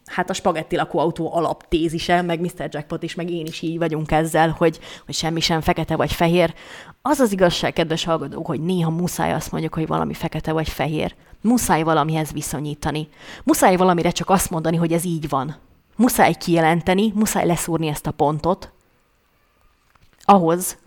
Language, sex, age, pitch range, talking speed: Hungarian, female, 30-49, 165-195 Hz, 165 wpm